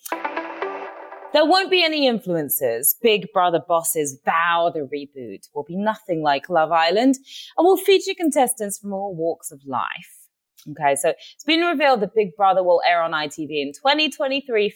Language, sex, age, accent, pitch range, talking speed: English, female, 20-39, British, 155-245 Hz, 165 wpm